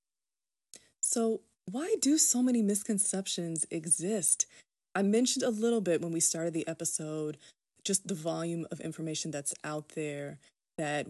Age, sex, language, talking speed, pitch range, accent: 20-39, female, English, 140 wpm, 155-190 Hz, American